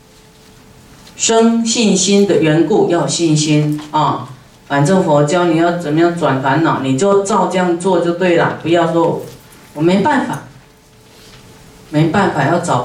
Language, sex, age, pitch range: Chinese, female, 40-59, 150-185 Hz